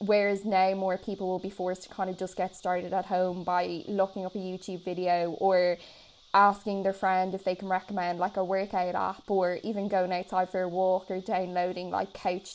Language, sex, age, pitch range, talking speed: English, female, 10-29, 180-200 Hz, 210 wpm